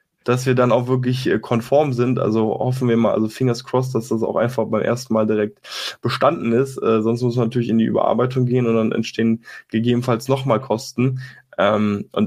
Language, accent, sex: German, German, male